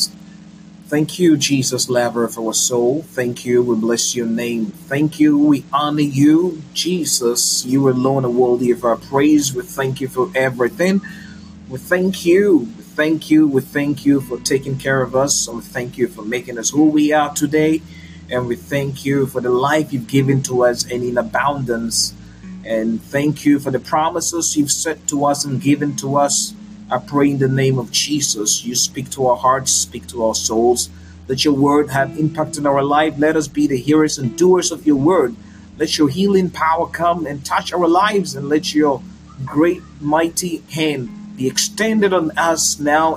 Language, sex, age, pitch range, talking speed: Finnish, male, 30-49, 120-155 Hz, 190 wpm